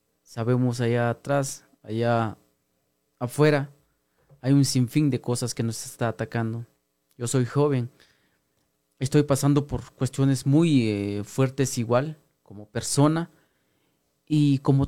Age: 30-49